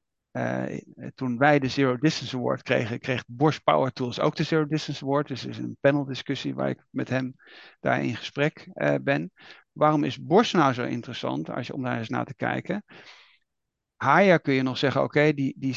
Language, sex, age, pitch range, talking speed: Dutch, male, 50-69, 125-155 Hz, 210 wpm